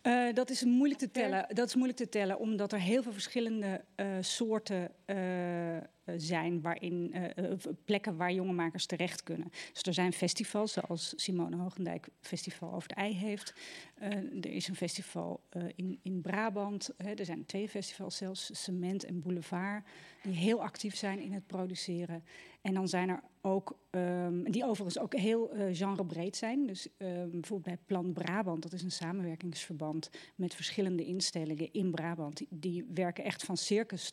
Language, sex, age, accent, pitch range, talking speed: Dutch, female, 40-59, Dutch, 175-210 Hz, 170 wpm